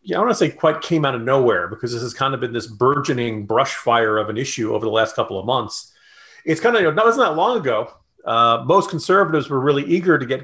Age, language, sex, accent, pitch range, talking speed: 40-59, English, male, American, 120-180 Hz, 275 wpm